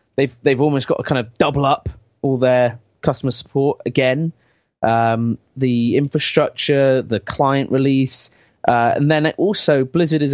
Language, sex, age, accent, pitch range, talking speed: English, male, 20-39, British, 120-145 Hz, 155 wpm